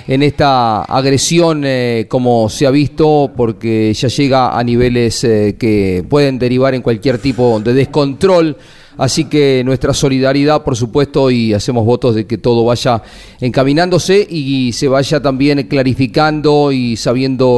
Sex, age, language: male, 40-59, Spanish